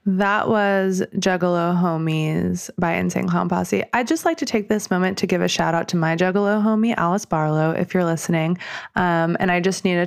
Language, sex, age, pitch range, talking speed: English, female, 20-39, 165-215 Hz, 210 wpm